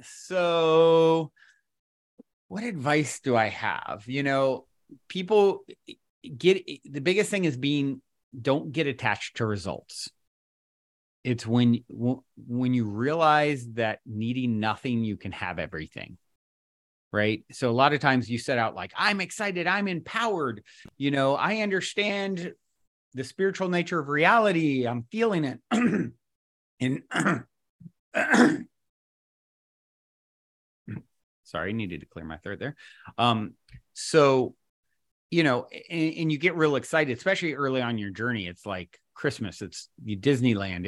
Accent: American